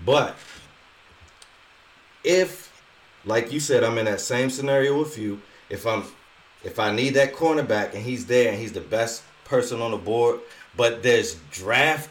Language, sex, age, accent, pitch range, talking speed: English, male, 30-49, American, 100-140 Hz, 160 wpm